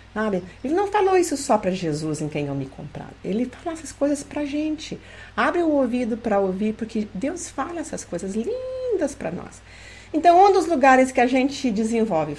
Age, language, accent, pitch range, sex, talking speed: 50-69, Portuguese, Brazilian, 165-235 Hz, female, 200 wpm